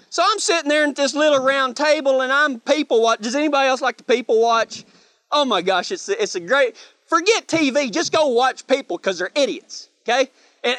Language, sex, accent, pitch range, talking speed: English, male, American, 235-300 Hz, 210 wpm